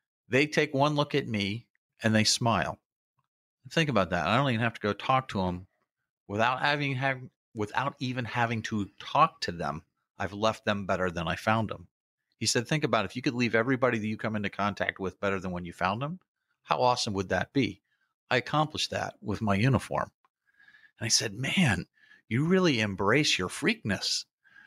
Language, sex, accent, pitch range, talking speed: English, male, American, 105-140 Hz, 195 wpm